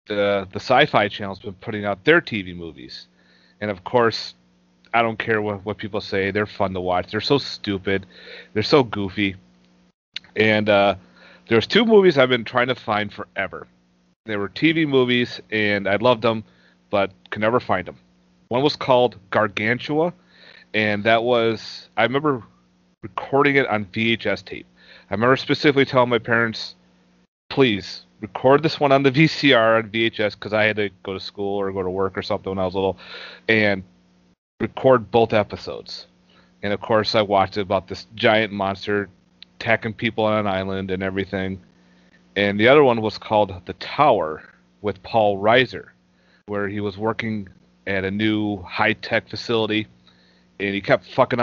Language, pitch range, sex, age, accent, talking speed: English, 95-115 Hz, male, 30-49, American, 170 wpm